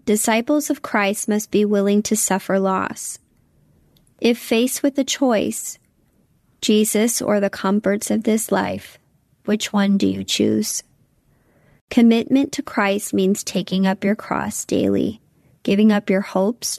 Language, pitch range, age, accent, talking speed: English, 185-220 Hz, 30-49, American, 140 wpm